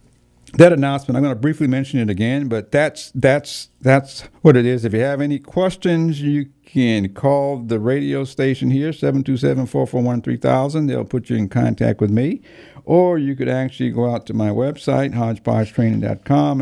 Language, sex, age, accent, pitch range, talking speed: English, male, 60-79, American, 110-140 Hz, 165 wpm